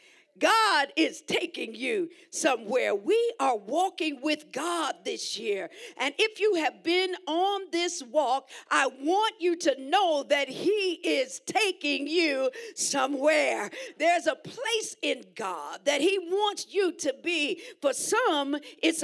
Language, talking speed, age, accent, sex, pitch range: English, 140 wpm, 50-69, American, female, 295-400 Hz